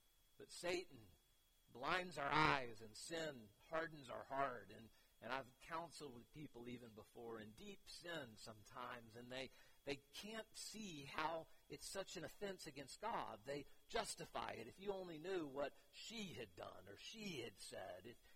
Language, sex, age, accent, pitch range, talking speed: English, male, 50-69, American, 125-160 Hz, 165 wpm